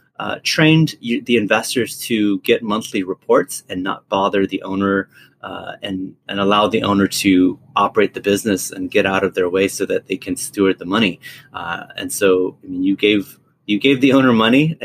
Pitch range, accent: 95-115 Hz, American